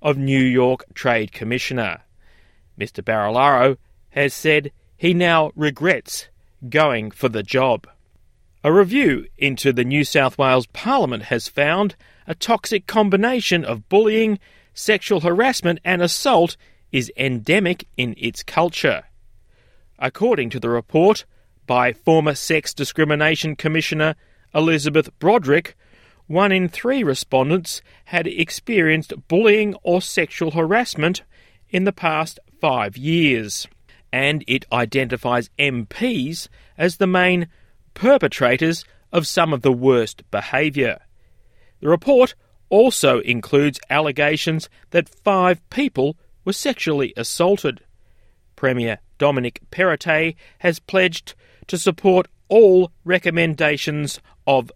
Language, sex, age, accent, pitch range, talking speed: English, male, 30-49, Australian, 125-180 Hz, 110 wpm